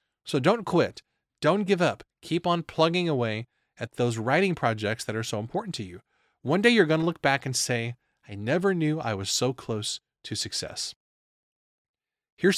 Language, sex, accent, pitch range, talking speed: English, male, American, 120-180 Hz, 180 wpm